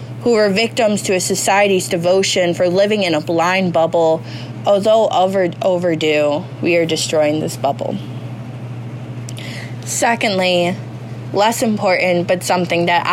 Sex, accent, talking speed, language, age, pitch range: female, American, 120 wpm, English, 20-39, 150-180 Hz